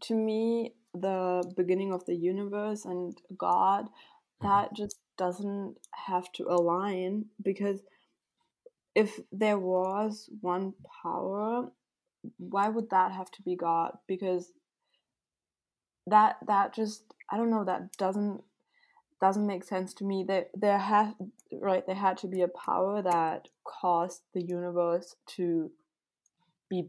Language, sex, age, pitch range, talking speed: English, female, 20-39, 175-200 Hz, 125 wpm